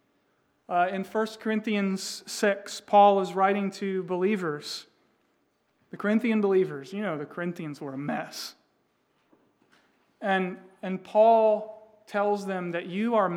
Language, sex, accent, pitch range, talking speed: English, male, American, 185-220 Hz, 125 wpm